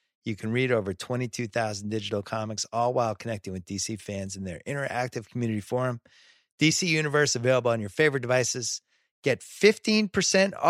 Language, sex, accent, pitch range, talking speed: English, male, American, 105-130 Hz, 150 wpm